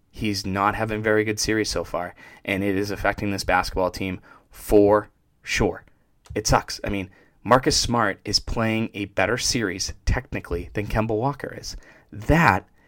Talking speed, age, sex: 160 wpm, 20-39, male